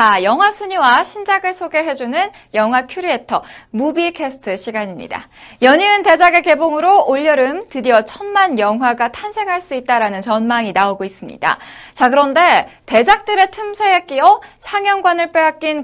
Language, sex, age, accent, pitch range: Korean, female, 20-39, native, 240-365 Hz